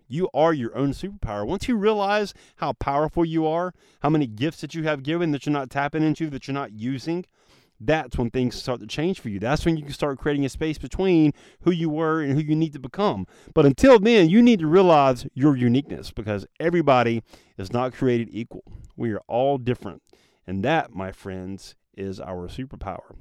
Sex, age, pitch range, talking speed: male, 30-49, 120-165 Hz, 205 wpm